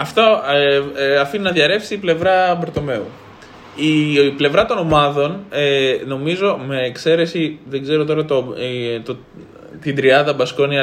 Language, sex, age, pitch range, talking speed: Greek, male, 20-39, 125-175 Hz, 150 wpm